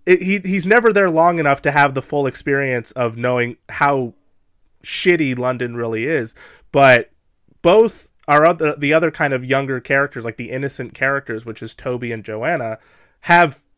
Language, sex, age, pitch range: English, male, 30-49, 115-145 Hz